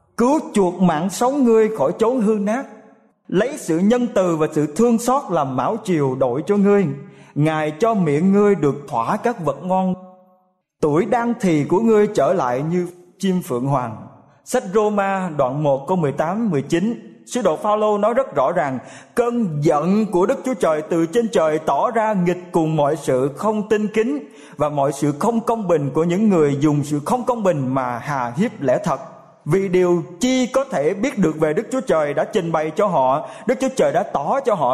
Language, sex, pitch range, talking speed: Vietnamese, male, 155-225 Hz, 200 wpm